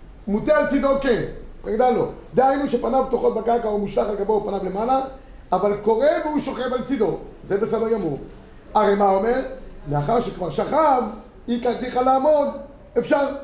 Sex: male